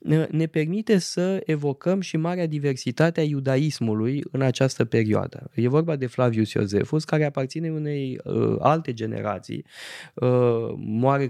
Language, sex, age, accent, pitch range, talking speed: Romanian, male, 20-39, native, 110-135 Hz, 120 wpm